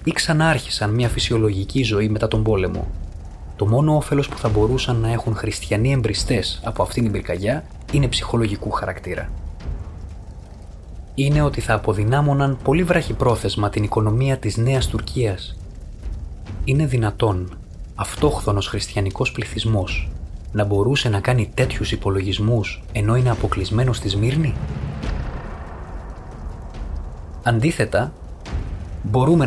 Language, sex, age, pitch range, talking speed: Greek, male, 20-39, 90-120 Hz, 110 wpm